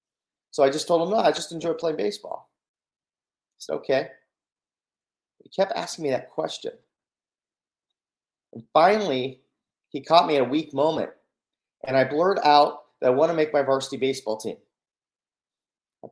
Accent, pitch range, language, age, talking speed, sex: American, 120-170 Hz, English, 40-59, 160 wpm, male